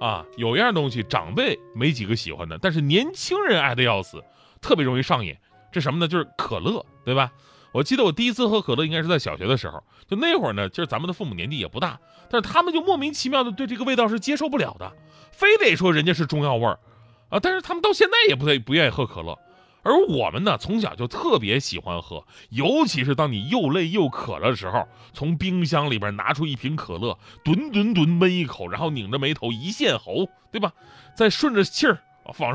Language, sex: Chinese, male